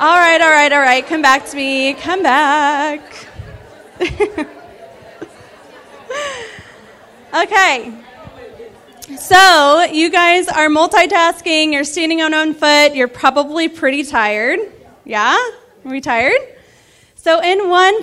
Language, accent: English, American